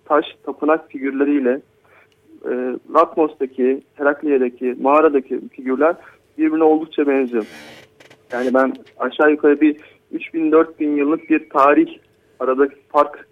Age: 40-59